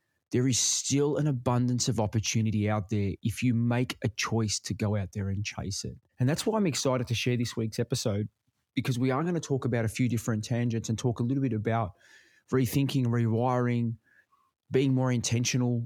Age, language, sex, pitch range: 20-39, English, male, 115-135 Hz